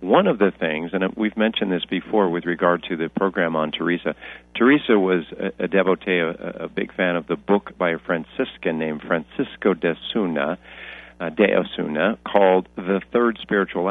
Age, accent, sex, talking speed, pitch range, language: 50-69, American, male, 180 wpm, 80-100 Hz, English